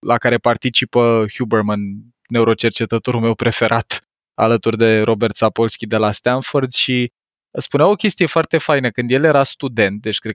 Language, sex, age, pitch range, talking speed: Romanian, male, 20-39, 115-140 Hz, 150 wpm